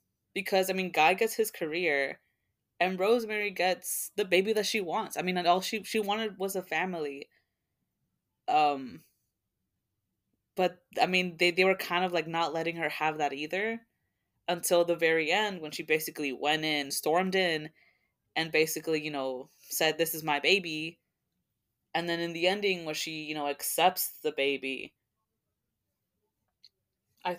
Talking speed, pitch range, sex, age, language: 160 wpm, 155-185 Hz, female, 20-39, English